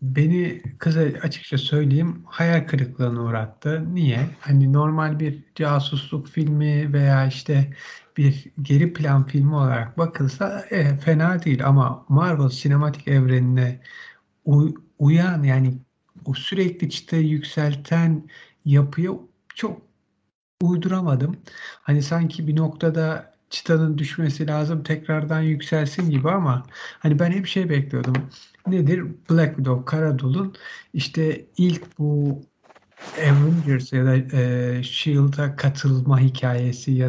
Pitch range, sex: 135-165 Hz, male